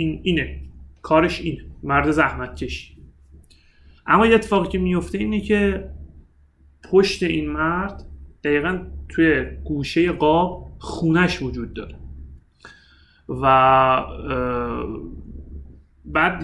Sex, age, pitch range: male, 30-49, 115-180 Hz